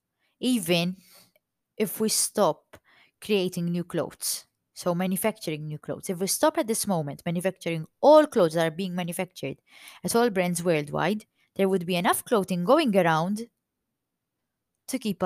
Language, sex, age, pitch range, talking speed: English, female, 20-39, 170-225 Hz, 145 wpm